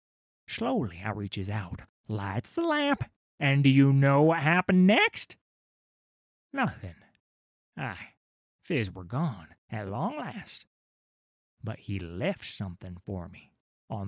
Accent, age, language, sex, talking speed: American, 30-49, English, male, 125 wpm